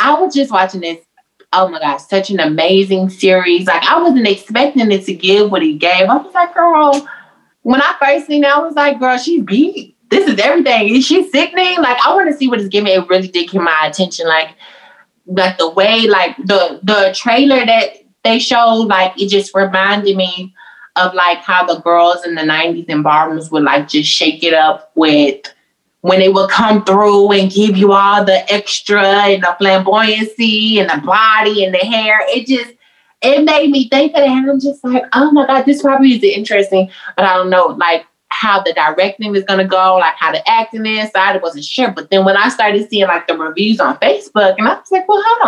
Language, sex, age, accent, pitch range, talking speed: English, female, 20-39, American, 185-265 Hz, 220 wpm